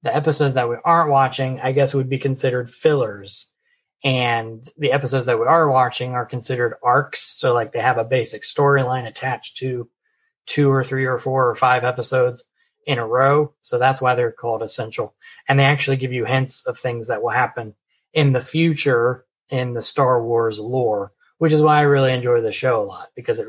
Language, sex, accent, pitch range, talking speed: English, male, American, 130-165 Hz, 200 wpm